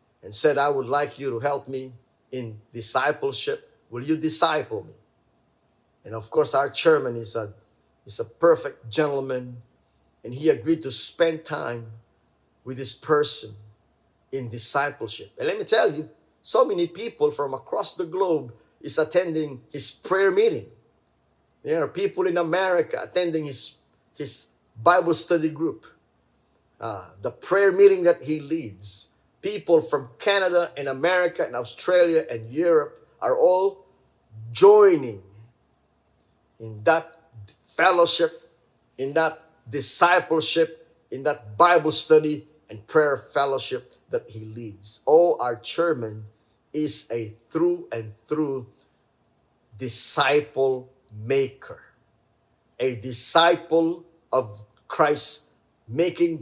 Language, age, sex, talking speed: English, 50-69, male, 120 wpm